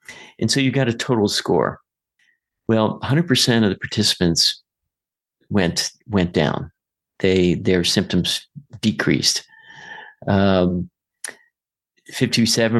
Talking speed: 95 wpm